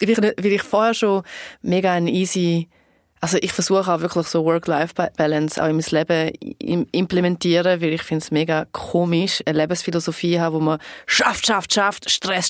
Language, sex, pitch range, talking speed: German, female, 170-205 Hz, 170 wpm